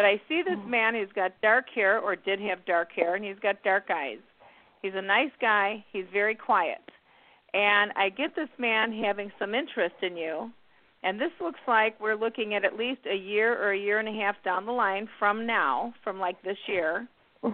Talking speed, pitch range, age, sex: 210 wpm, 195-235 Hz, 50-69, female